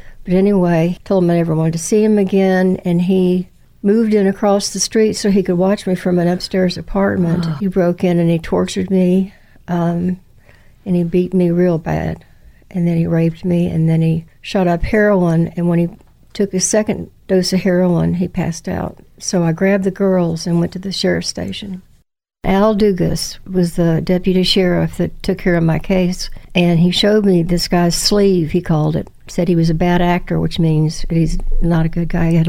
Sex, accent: female, American